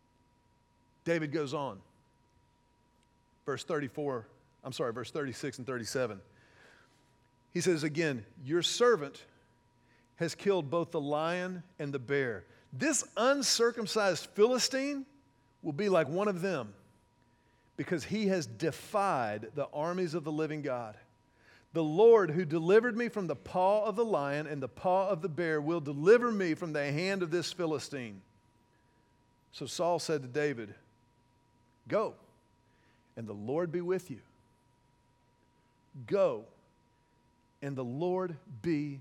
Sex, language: male, English